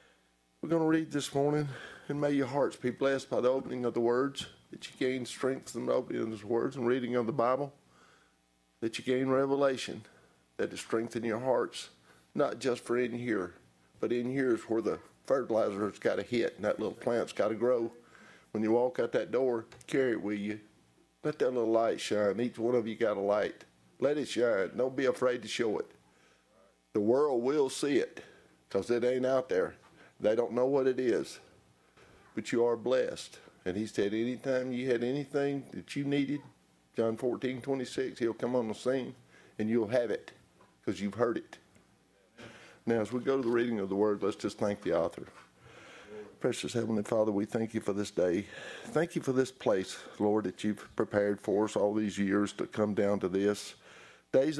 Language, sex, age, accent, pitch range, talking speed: English, male, 50-69, American, 105-130 Hz, 200 wpm